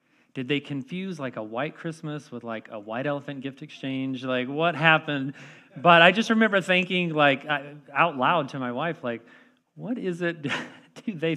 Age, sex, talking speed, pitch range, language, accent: 40-59, male, 180 wpm, 130-170 Hz, English, American